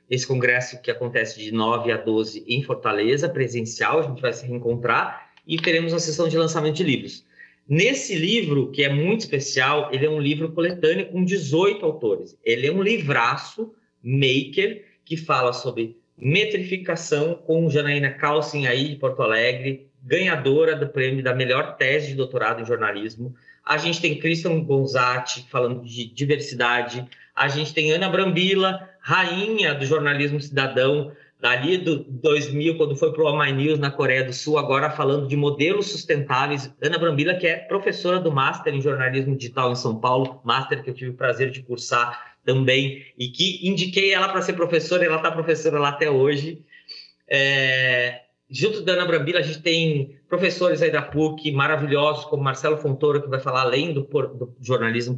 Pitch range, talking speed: 130-165 Hz, 170 wpm